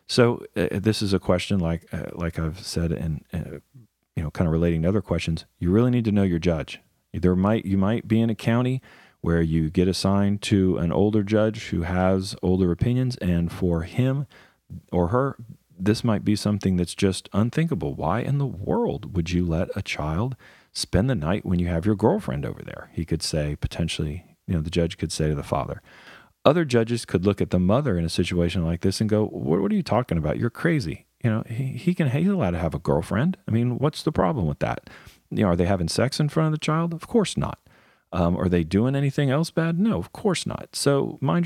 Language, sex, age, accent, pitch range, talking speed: English, male, 40-59, American, 85-125 Hz, 230 wpm